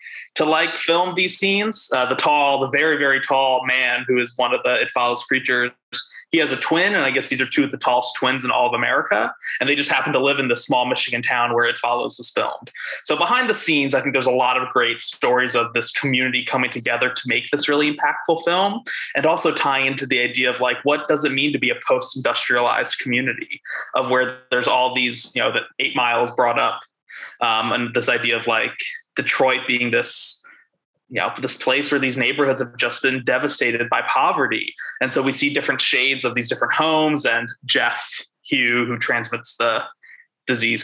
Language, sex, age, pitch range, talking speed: English, male, 20-39, 125-160 Hz, 215 wpm